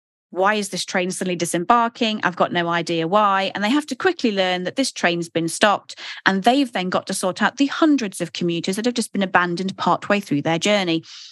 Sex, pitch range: female, 180-225 Hz